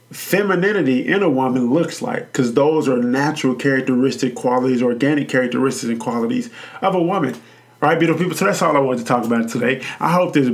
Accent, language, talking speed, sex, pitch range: American, English, 205 wpm, male, 125-150 Hz